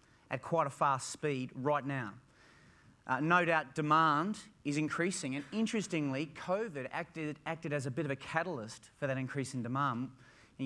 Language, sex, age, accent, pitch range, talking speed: English, male, 30-49, Australian, 135-185 Hz, 170 wpm